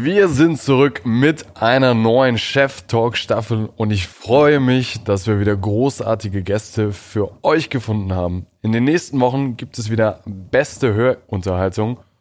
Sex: male